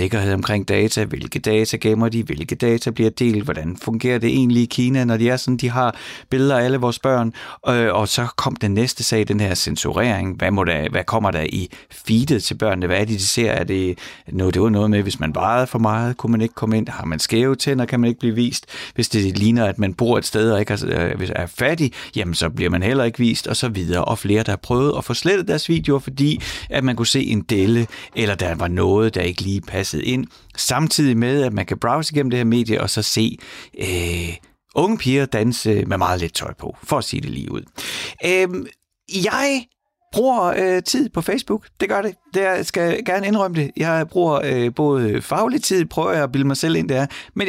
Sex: male